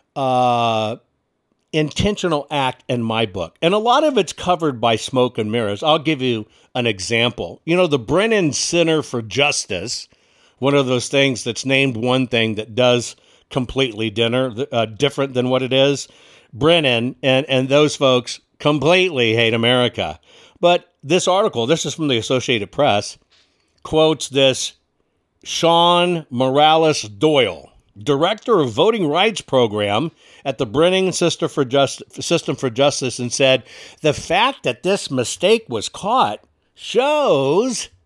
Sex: male